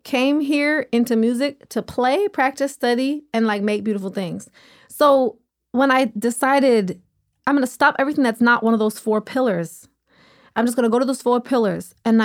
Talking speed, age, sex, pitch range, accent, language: 190 wpm, 20-39, female, 215-260 Hz, American, English